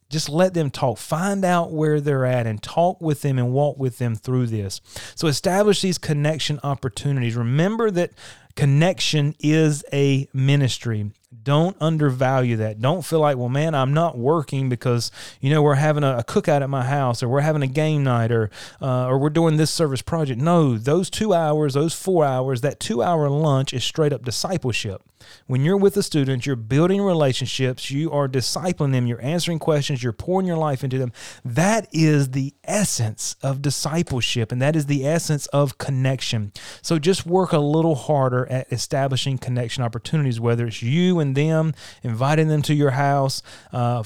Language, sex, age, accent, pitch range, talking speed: English, male, 30-49, American, 125-155 Hz, 185 wpm